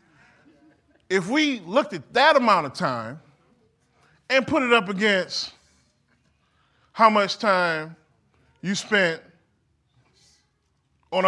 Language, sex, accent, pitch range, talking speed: English, male, American, 160-240 Hz, 100 wpm